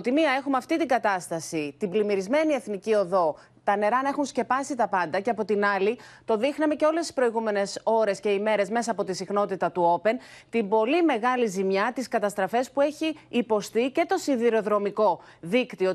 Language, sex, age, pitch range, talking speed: Greek, female, 30-49, 200-260 Hz, 190 wpm